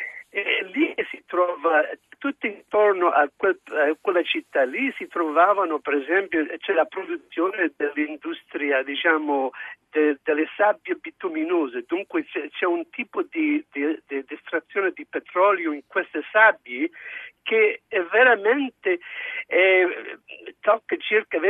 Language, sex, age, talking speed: Italian, male, 50-69, 125 wpm